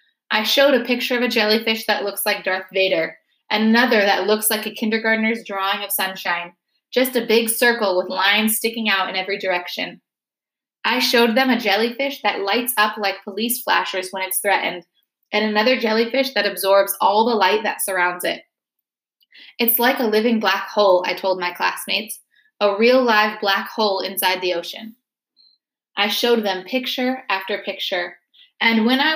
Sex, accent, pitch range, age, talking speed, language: female, American, 200-250 Hz, 20-39, 175 wpm, English